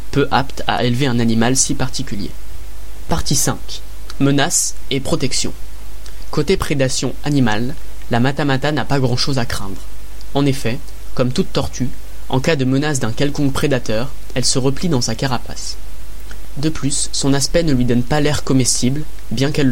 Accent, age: French, 20-39